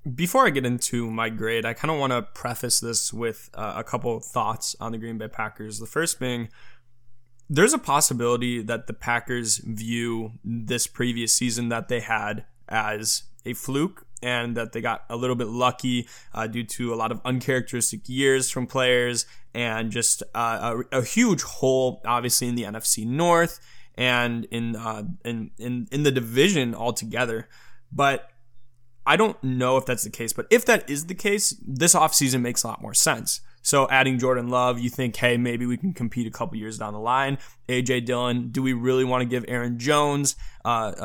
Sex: male